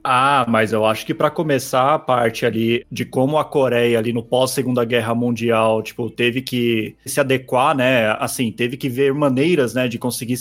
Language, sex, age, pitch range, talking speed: Portuguese, male, 20-39, 125-175 Hz, 190 wpm